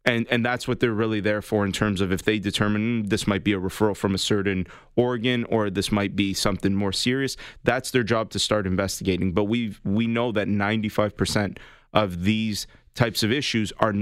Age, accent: 30-49, American